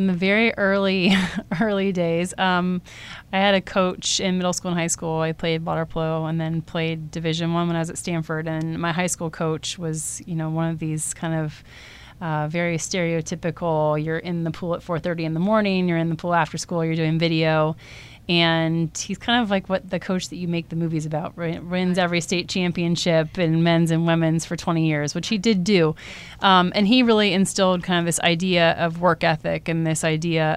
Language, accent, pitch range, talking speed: English, American, 160-190 Hz, 220 wpm